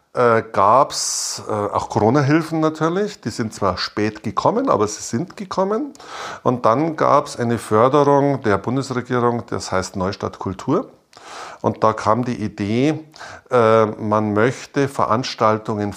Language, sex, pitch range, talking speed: German, male, 100-140 Hz, 130 wpm